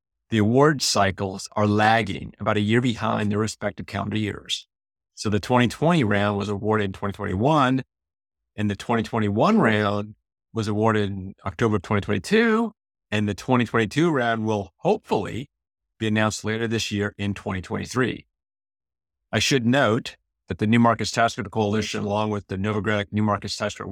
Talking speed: 155 wpm